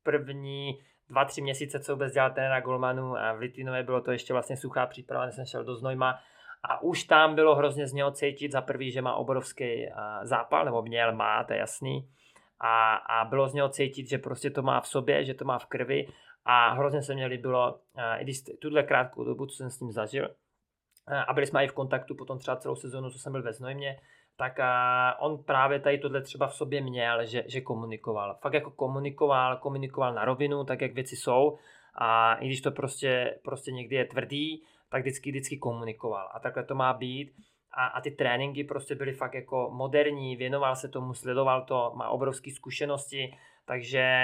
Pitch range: 125-140 Hz